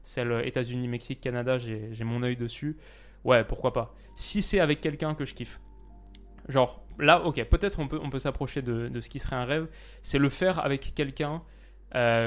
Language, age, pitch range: French, 20-39, 120-140 Hz